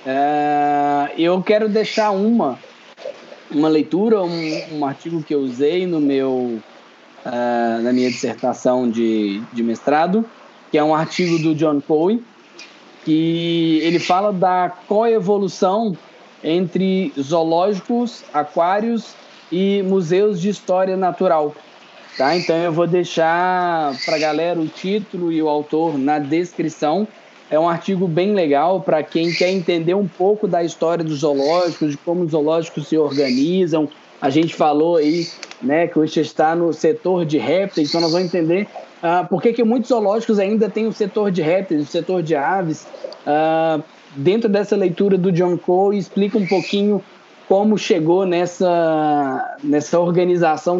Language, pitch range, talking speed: Portuguese, 155-195 Hz, 145 wpm